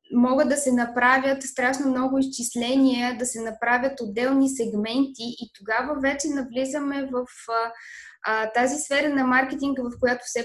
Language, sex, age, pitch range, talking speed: Bulgarian, female, 20-39, 220-265 Hz, 140 wpm